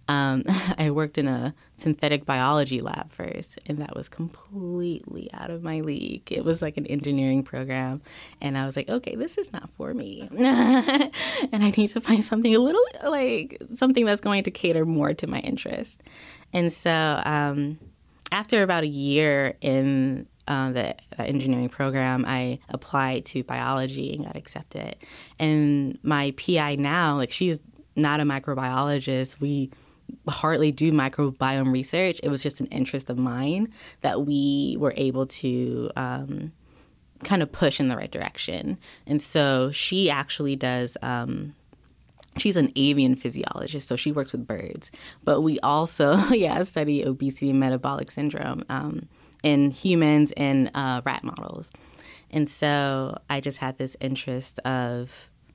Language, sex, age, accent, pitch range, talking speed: English, female, 10-29, American, 135-165 Hz, 155 wpm